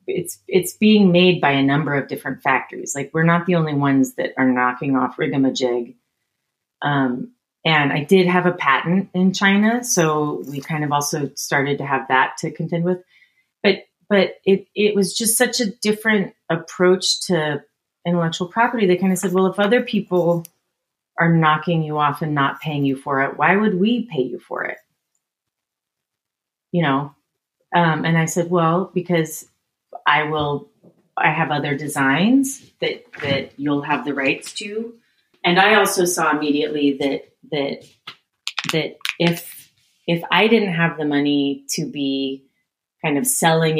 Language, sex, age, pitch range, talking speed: English, female, 30-49, 145-190 Hz, 165 wpm